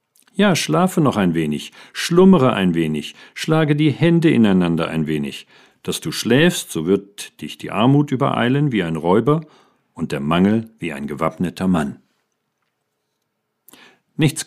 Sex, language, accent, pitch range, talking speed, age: male, German, German, 90-125 Hz, 140 wpm, 50-69